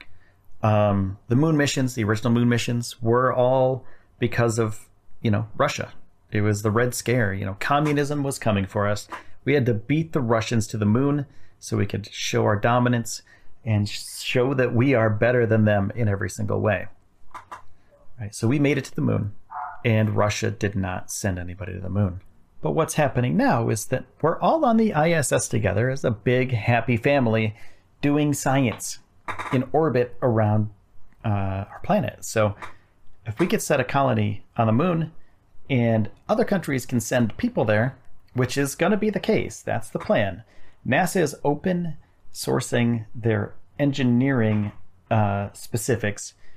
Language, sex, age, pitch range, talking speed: English, male, 40-59, 100-130 Hz, 170 wpm